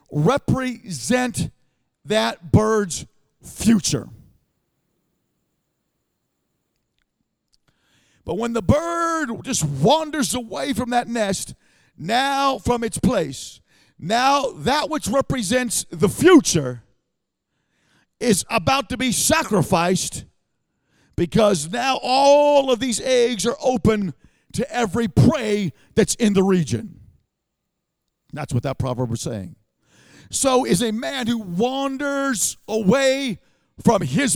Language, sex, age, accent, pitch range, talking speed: English, male, 50-69, American, 165-250 Hz, 105 wpm